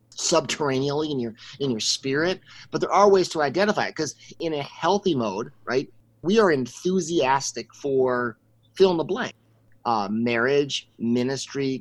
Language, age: English, 30-49